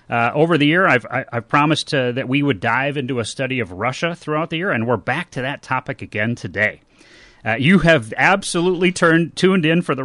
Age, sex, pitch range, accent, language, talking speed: 40-59, male, 115-155 Hz, American, English, 225 wpm